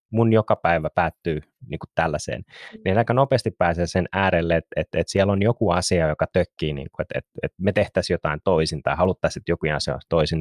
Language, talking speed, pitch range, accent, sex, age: Finnish, 210 wpm, 85-110 Hz, native, male, 20-39